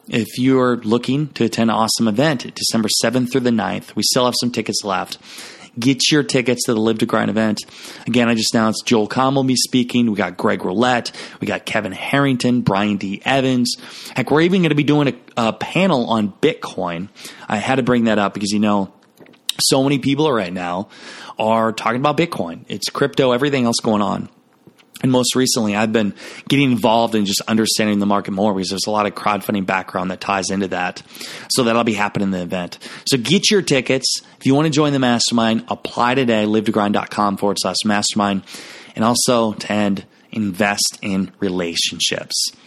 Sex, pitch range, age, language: male, 100-125 Hz, 20-39, English